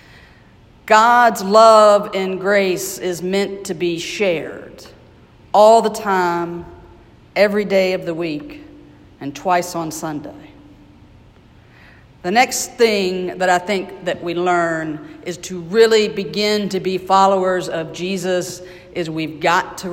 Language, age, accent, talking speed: English, 50-69, American, 130 wpm